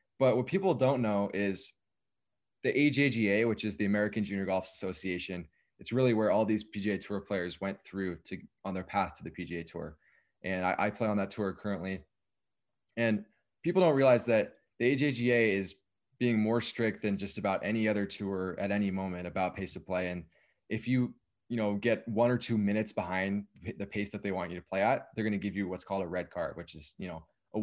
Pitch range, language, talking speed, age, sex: 95-115 Hz, English, 215 wpm, 20-39, male